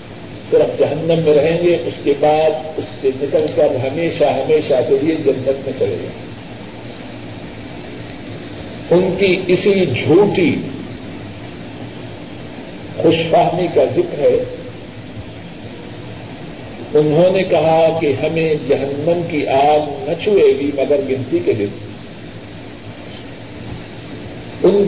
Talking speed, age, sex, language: 110 wpm, 50-69, male, Urdu